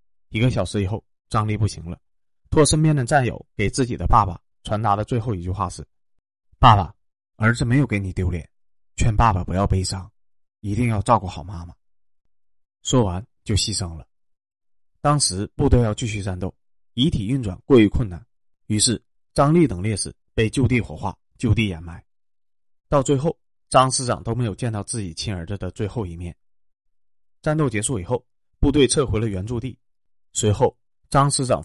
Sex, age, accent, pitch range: male, 20-39, native, 90-125 Hz